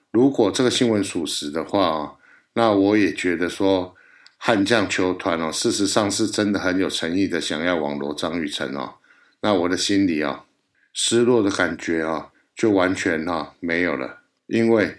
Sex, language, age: male, Chinese, 60-79